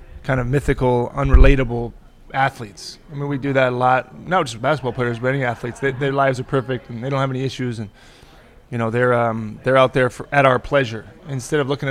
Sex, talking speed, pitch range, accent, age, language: male, 225 wpm, 120-145 Hz, American, 20-39, English